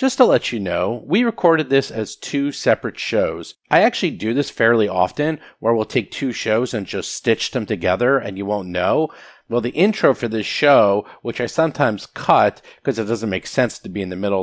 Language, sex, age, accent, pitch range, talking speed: English, male, 30-49, American, 100-140 Hz, 215 wpm